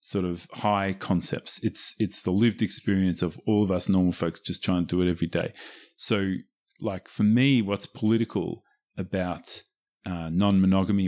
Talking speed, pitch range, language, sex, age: 170 wpm, 95-115 Hz, English, male, 30-49